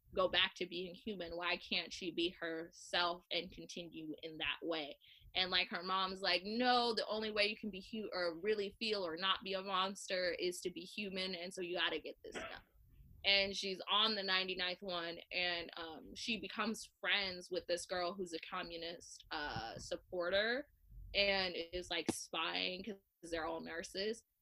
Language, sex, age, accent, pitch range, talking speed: English, female, 20-39, American, 175-215 Hz, 180 wpm